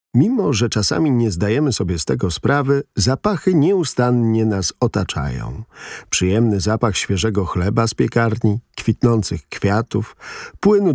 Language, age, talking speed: Polish, 50-69, 120 wpm